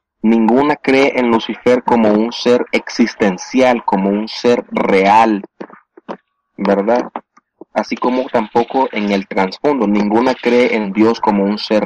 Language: Spanish